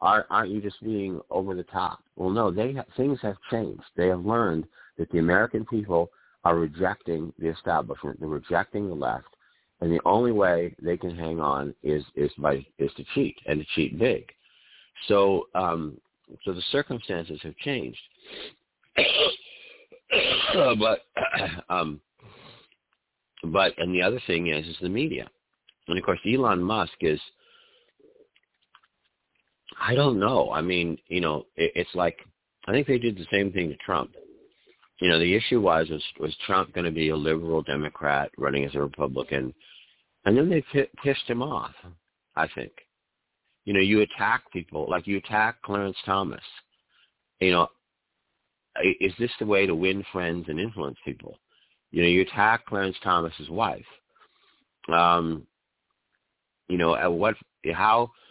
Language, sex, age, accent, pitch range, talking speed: English, male, 50-69, American, 80-110 Hz, 155 wpm